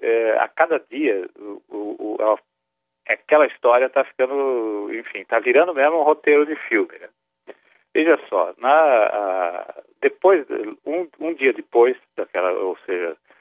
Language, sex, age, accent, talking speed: Portuguese, male, 50-69, Brazilian, 115 wpm